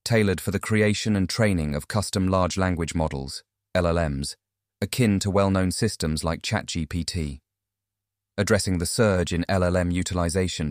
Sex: male